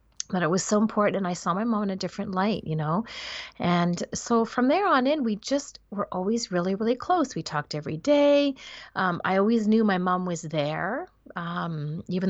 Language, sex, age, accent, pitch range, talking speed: English, female, 30-49, American, 160-205 Hz, 210 wpm